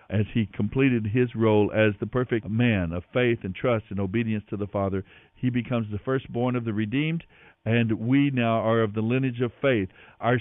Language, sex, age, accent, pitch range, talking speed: English, male, 60-79, American, 110-140 Hz, 200 wpm